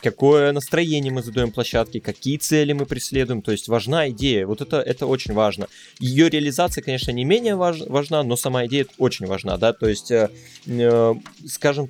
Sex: male